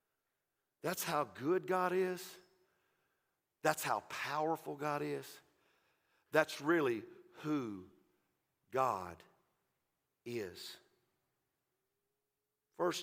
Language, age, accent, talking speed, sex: English, 50-69, American, 75 wpm, male